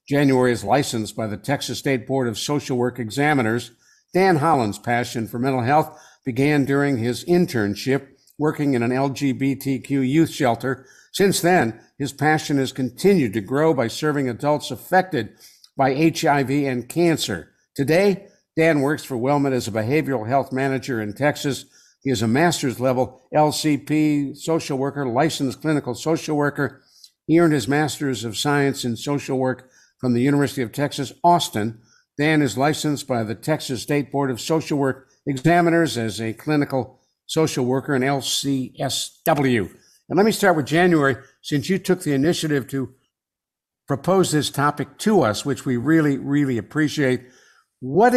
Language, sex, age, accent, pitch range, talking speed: English, male, 60-79, American, 130-155 Hz, 155 wpm